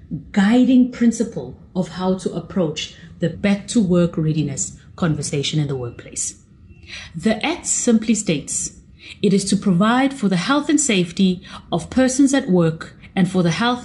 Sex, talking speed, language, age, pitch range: female, 145 wpm, English, 30-49, 155-225 Hz